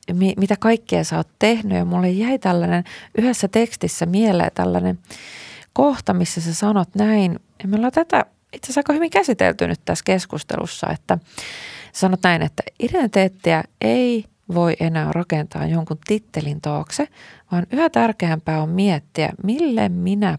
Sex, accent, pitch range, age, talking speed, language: female, native, 155-215 Hz, 30-49, 140 wpm, Finnish